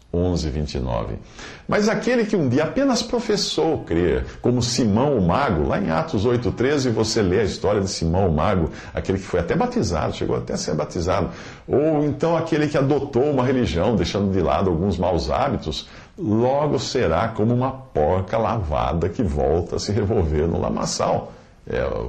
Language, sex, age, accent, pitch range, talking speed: Portuguese, male, 50-69, Brazilian, 85-130 Hz, 175 wpm